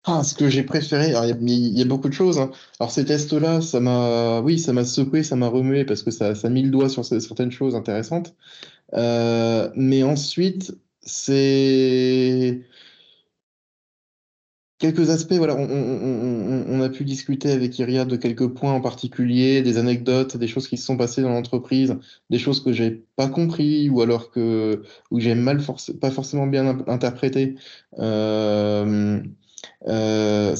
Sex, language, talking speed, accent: male, French, 165 wpm, French